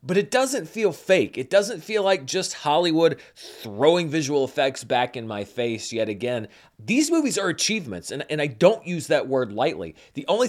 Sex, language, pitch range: male, English, 125-185 Hz